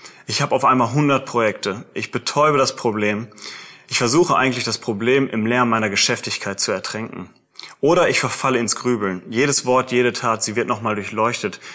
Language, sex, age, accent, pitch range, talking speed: German, male, 30-49, German, 110-130 Hz, 175 wpm